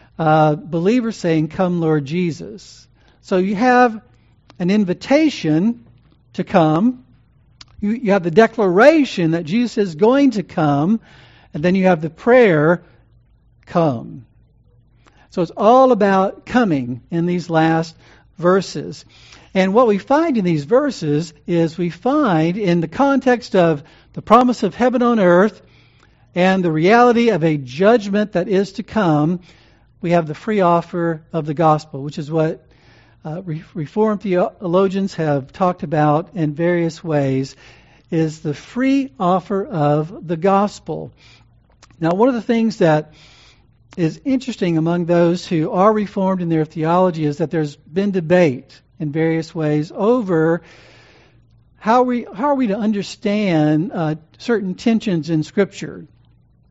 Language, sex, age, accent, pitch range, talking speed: English, male, 60-79, American, 150-200 Hz, 140 wpm